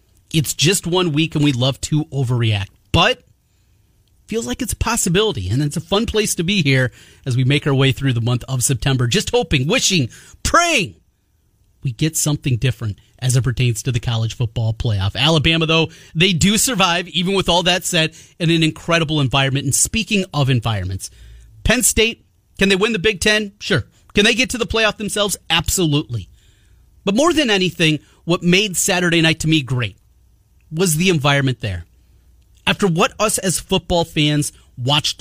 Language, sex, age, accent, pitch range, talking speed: English, male, 30-49, American, 115-175 Hz, 180 wpm